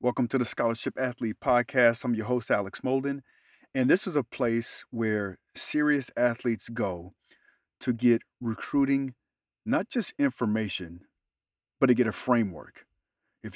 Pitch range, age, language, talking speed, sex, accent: 110-130 Hz, 40-59, English, 140 wpm, male, American